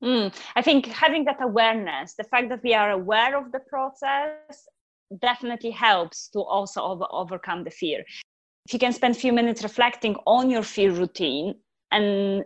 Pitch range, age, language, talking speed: 195-240 Hz, 20-39, English, 170 wpm